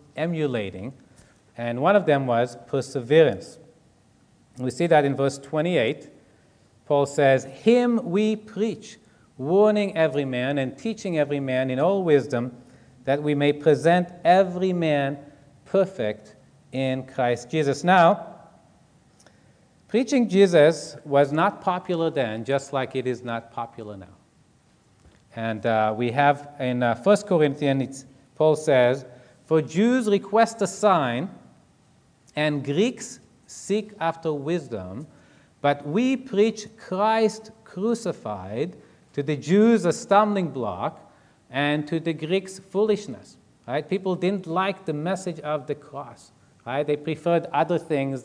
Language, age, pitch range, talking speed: English, 40-59, 135-190 Hz, 125 wpm